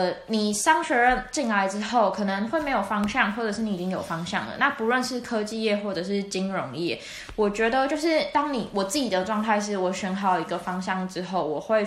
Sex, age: female, 20-39